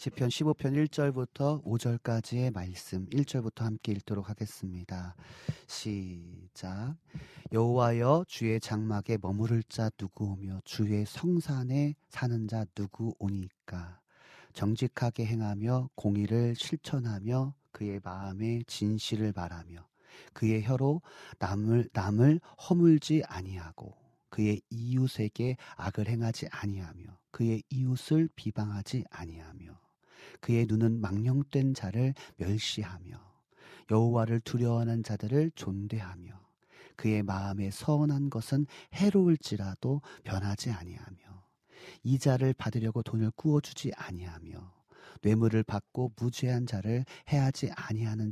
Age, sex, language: 40-59, male, Korean